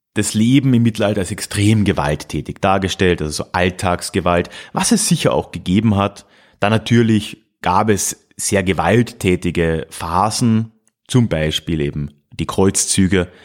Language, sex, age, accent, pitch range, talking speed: German, male, 30-49, German, 95-125 Hz, 130 wpm